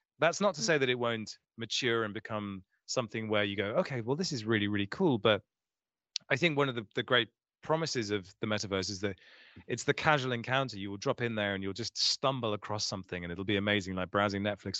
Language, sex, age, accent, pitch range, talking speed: English, male, 30-49, British, 100-130 Hz, 230 wpm